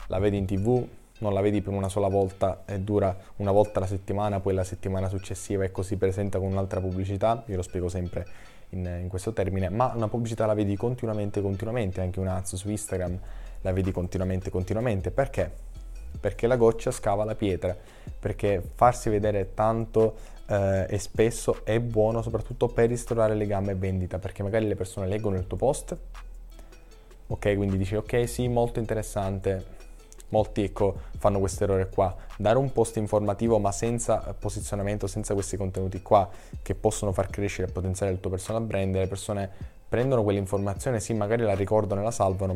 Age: 20-39